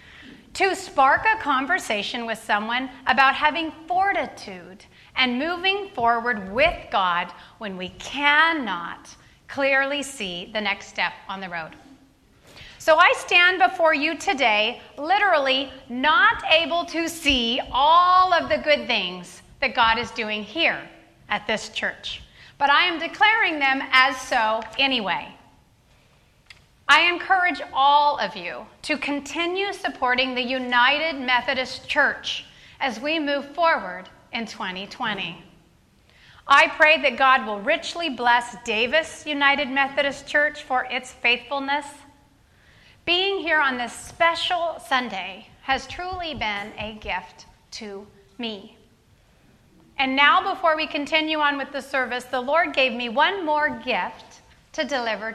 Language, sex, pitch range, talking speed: English, female, 235-320 Hz, 130 wpm